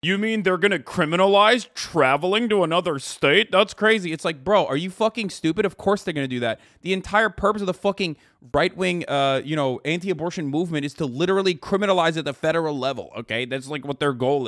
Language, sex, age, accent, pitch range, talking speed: English, male, 30-49, American, 130-180 Hz, 210 wpm